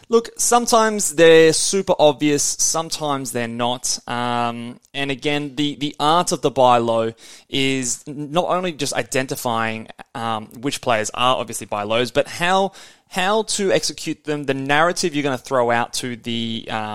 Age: 20-39